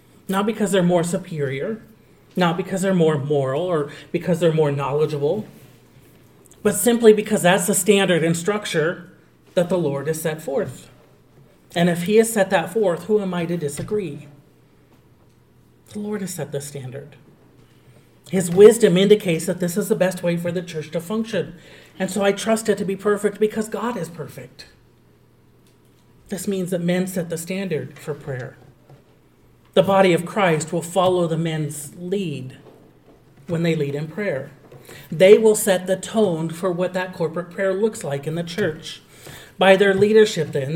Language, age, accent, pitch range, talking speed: English, 40-59, American, 150-195 Hz, 170 wpm